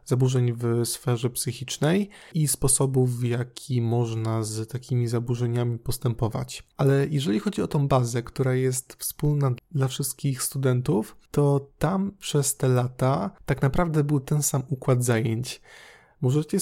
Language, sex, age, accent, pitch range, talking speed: Polish, male, 20-39, native, 125-145 Hz, 135 wpm